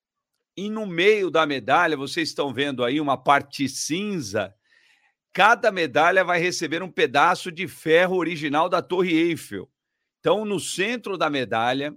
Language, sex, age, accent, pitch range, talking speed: Portuguese, male, 50-69, Brazilian, 140-180 Hz, 145 wpm